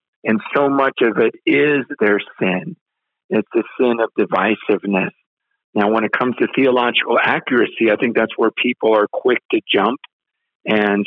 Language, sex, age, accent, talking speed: English, male, 50-69, American, 165 wpm